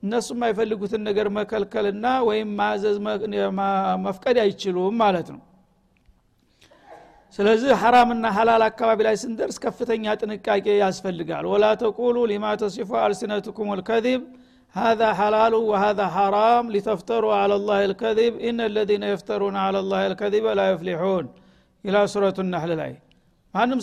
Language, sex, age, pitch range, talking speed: Amharic, male, 60-79, 205-225 Hz, 120 wpm